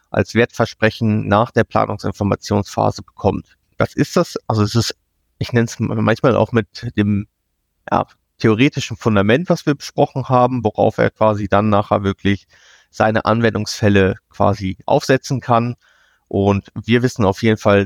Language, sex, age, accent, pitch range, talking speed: German, male, 30-49, German, 100-120 Hz, 140 wpm